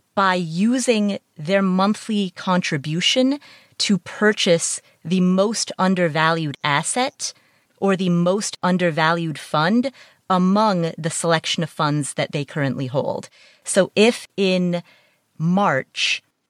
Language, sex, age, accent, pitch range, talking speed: English, female, 30-49, American, 150-195 Hz, 105 wpm